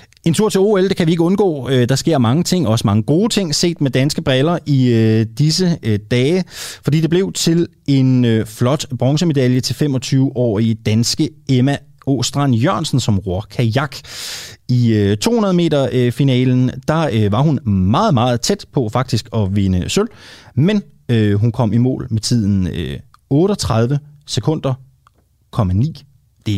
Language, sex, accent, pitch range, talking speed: Danish, male, native, 105-150 Hz, 145 wpm